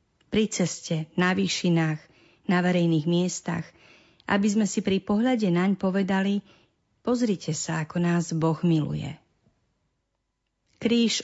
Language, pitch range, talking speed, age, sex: Slovak, 165-210 Hz, 110 wpm, 40-59, female